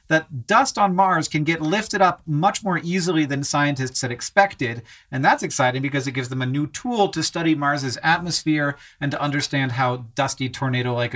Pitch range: 125-175 Hz